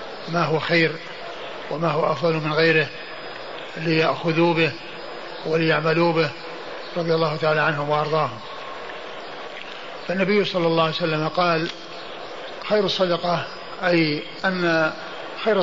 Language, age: Arabic, 50-69